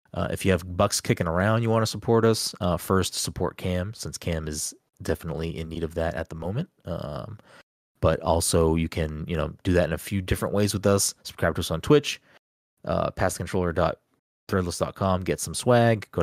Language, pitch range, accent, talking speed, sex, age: English, 85-105 Hz, American, 200 wpm, male, 30-49